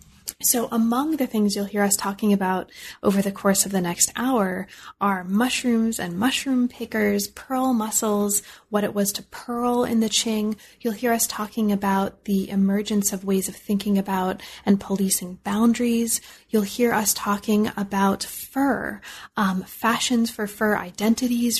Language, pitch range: English, 195-225 Hz